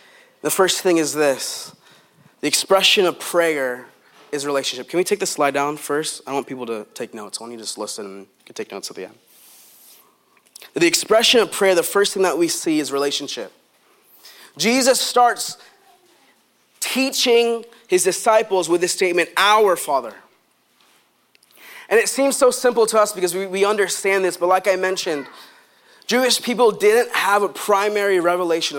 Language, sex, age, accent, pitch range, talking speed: English, male, 20-39, American, 160-230 Hz, 170 wpm